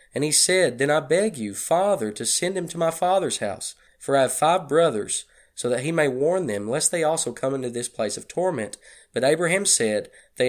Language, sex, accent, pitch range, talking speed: English, male, American, 115-155 Hz, 225 wpm